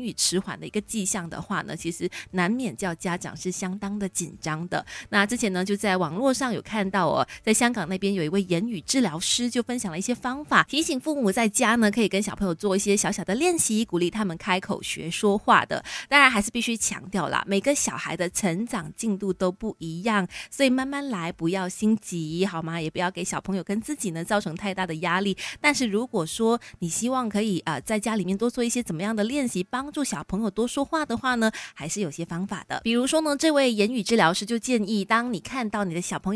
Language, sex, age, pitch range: Chinese, female, 20-39, 185-240 Hz